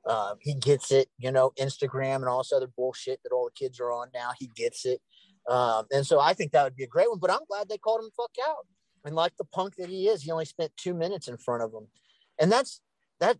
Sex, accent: male, American